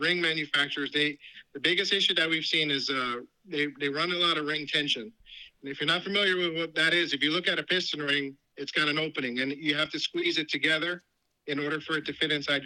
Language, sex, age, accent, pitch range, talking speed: English, male, 50-69, American, 145-180 Hz, 250 wpm